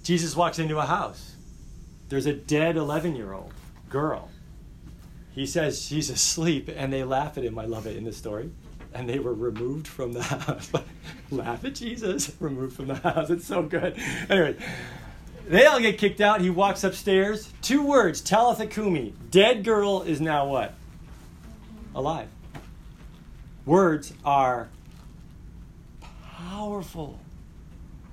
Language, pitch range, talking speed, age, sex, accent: English, 150-200 Hz, 135 wpm, 40-59, male, American